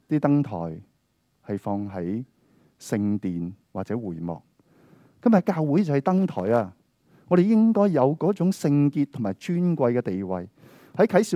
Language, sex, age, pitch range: Chinese, male, 20-39, 105-155 Hz